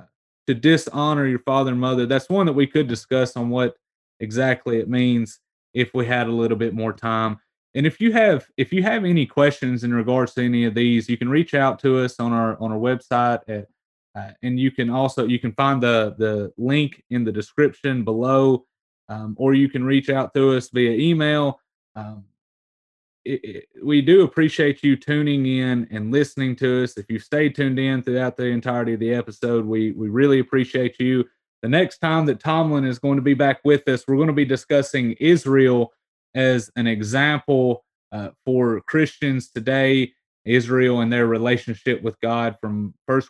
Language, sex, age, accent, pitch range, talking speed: English, male, 30-49, American, 115-140 Hz, 195 wpm